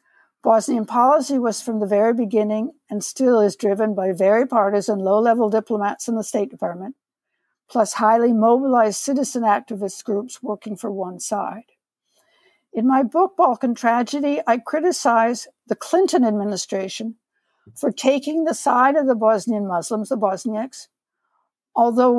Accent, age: American, 60-79